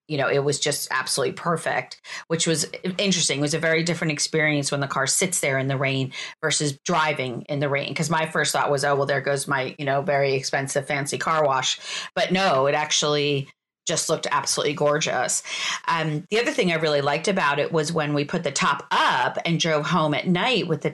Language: English